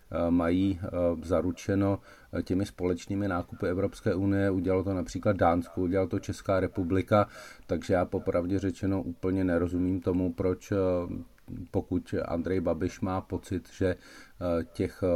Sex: male